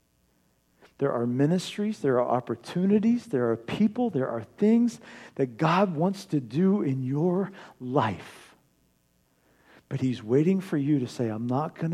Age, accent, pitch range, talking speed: 50-69, American, 110-145 Hz, 150 wpm